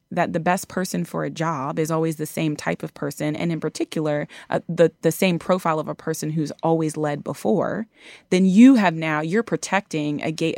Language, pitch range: English, 155-195 Hz